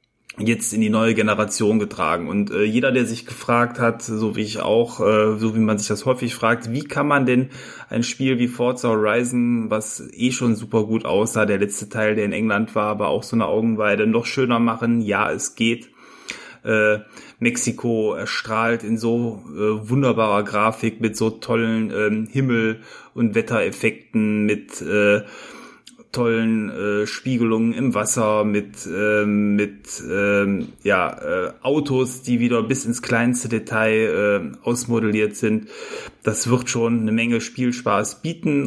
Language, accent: German, German